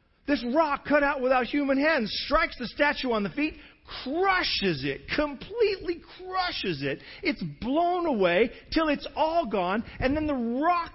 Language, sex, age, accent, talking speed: English, male, 40-59, American, 160 wpm